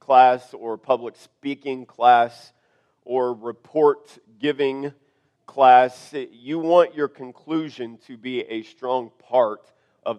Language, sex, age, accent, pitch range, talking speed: English, male, 40-59, American, 120-140 Hz, 110 wpm